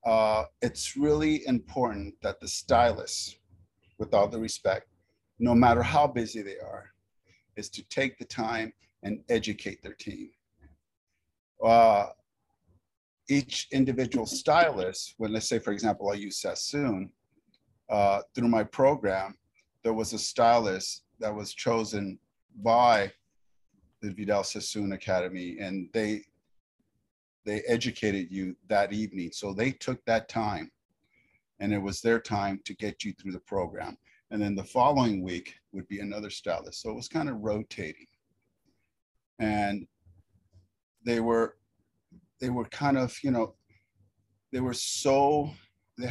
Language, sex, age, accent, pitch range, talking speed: English, male, 50-69, American, 95-115 Hz, 135 wpm